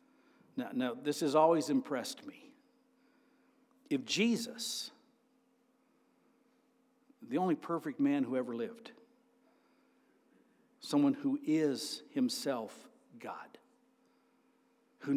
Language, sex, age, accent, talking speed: English, male, 60-79, American, 85 wpm